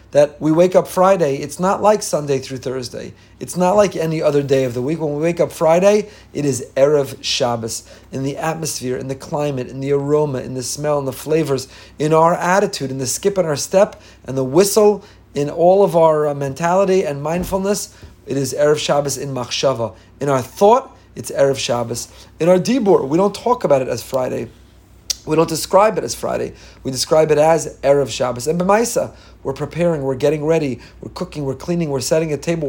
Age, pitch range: 30-49, 130-165 Hz